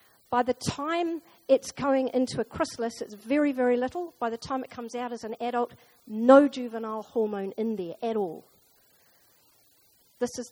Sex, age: female, 50-69